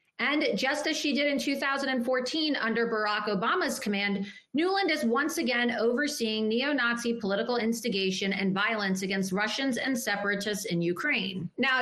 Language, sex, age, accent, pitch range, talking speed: English, female, 30-49, American, 205-255 Hz, 140 wpm